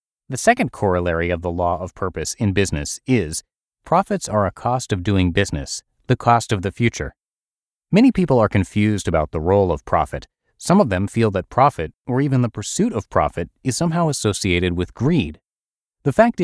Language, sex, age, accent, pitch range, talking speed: English, male, 30-49, American, 95-130 Hz, 185 wpm